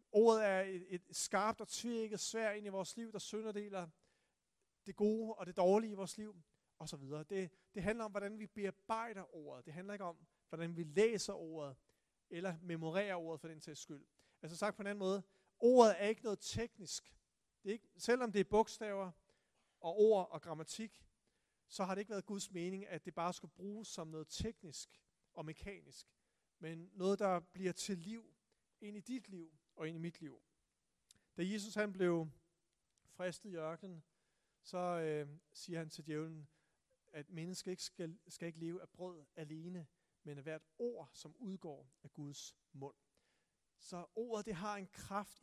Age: 40-59